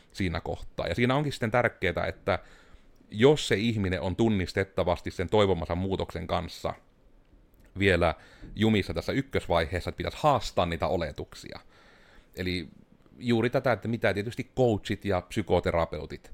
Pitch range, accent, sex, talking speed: 85-105 Hz, native, male, 130 wpm